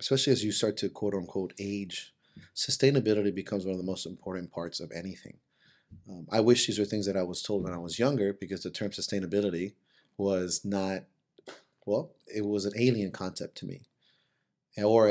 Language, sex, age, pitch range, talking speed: English, male, 30-49, 95-110 Hz, 185 wpm